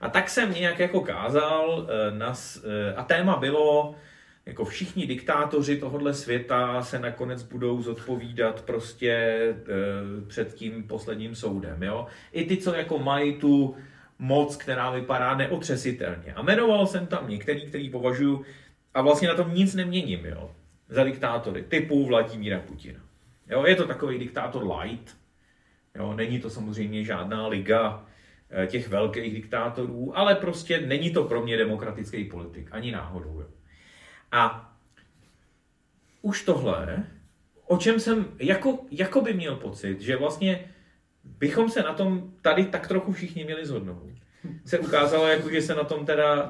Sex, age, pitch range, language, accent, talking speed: male, 30-49, 110-155 Hz, Czech, native, 140 wpm